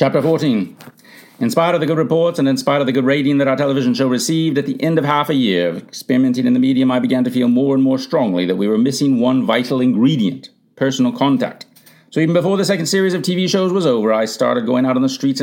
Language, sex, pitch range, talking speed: English, male, 135-180 Hz, 260 wpm